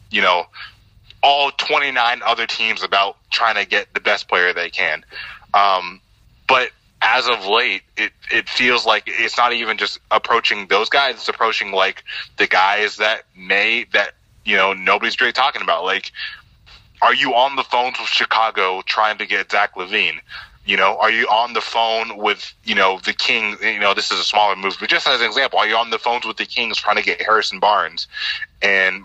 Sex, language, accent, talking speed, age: male, English, American, 200 wpm, 20-39